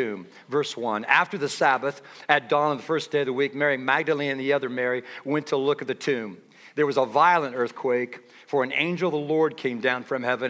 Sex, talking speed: male, 240 wpm